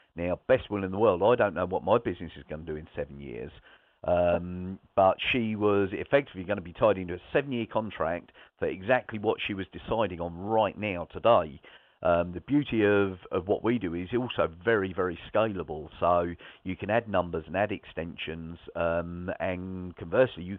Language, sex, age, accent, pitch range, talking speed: English, male, 50-69, British, 85-105 Hz, 195 wpm